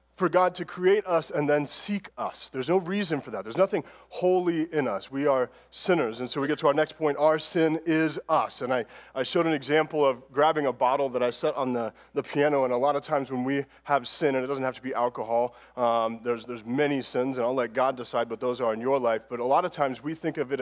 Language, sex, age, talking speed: English, male, 30-49, 270 wpm